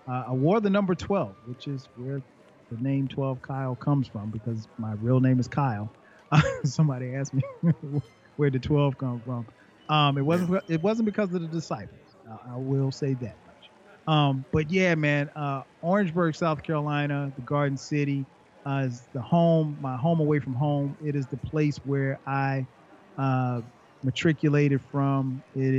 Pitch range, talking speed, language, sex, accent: 130-155 Hz, 170 wpm, English, male, American